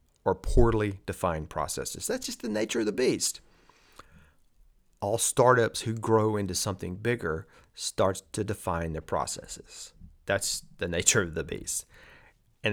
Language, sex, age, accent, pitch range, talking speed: English, male, 30-49, American, 100-120 Hz, 140 wpm